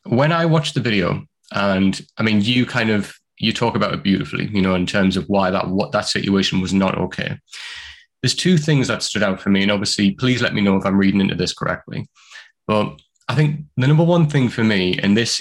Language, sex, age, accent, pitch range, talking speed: English, male, 20-39, British, 100-140 Hz, 230 wpm